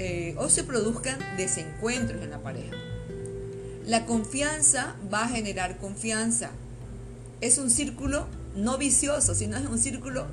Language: Spanish